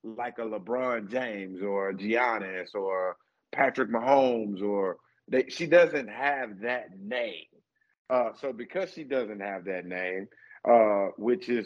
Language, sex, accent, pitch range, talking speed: English, male, American, 110-135 Hz, 135 wpm